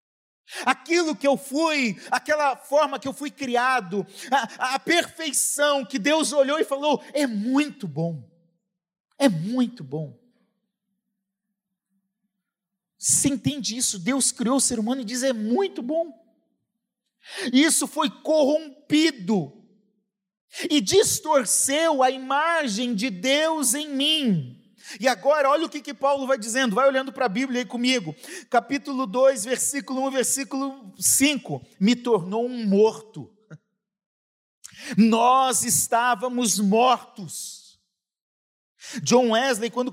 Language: Portuguese